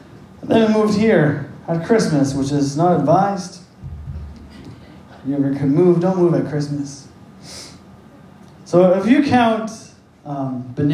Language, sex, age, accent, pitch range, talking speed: English, male, 20-39, American, 145-190 Hz, 135 wpm